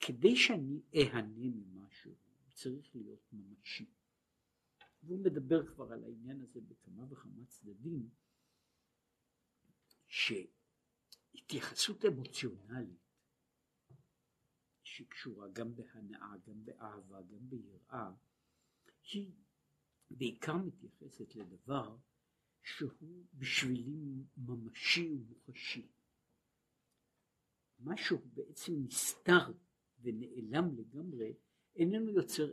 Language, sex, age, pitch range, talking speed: Hebrew, male, 60-79, 120-170 Hz, 75 wpm